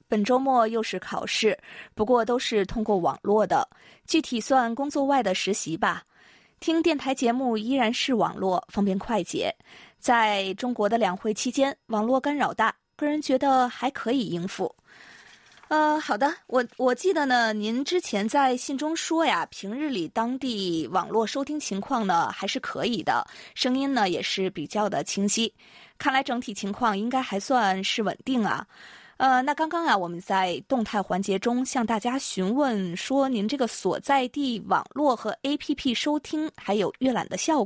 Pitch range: 210-275 Hz